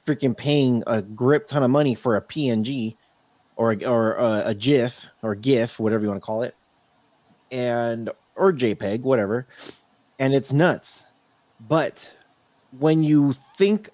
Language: English